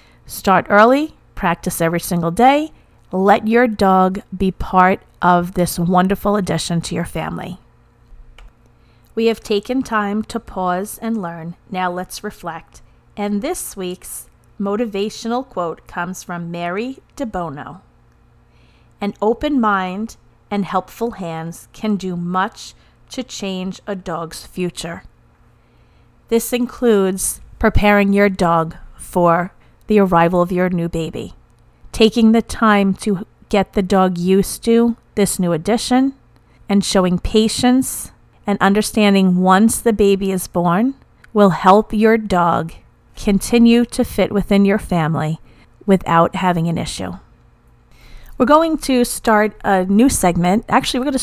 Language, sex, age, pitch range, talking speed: English, female, 40-59, 175-225 Hz, 130 wpm